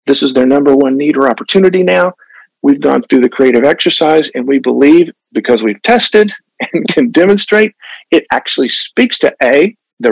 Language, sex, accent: English, male, American